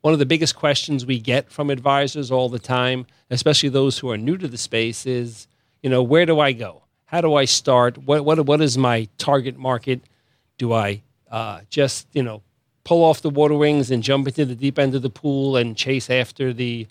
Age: 40-59